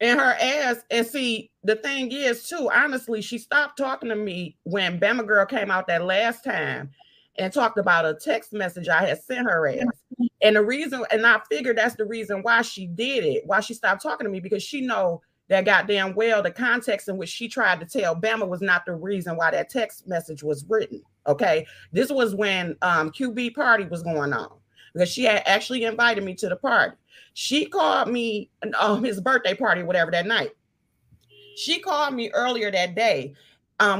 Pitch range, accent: 185-240 Hz, American